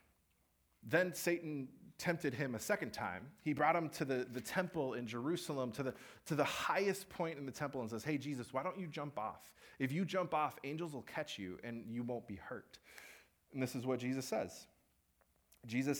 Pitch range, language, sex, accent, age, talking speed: 115-155 Hz, English, male, American, 30-49, 200 wpm